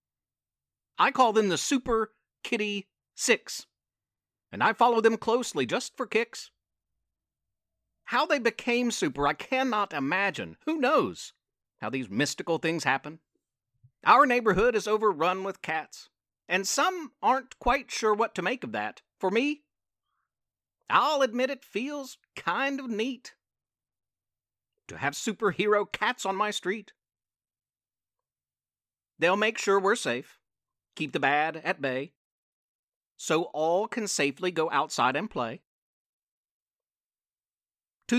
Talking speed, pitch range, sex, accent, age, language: 125 wpm, 160-240 Hz, male, American, 50-69, English